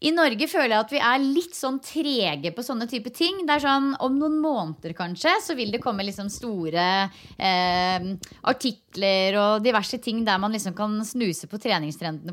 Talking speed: 195 wpm